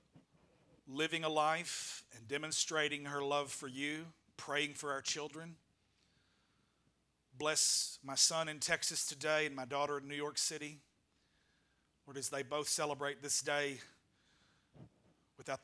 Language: English